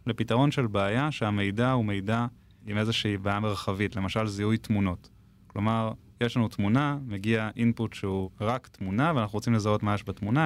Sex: male